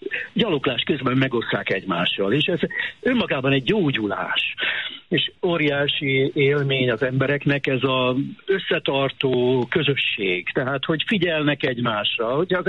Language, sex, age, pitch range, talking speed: Hungarian, male, 60-79, 125-160 Hz, 115 wpm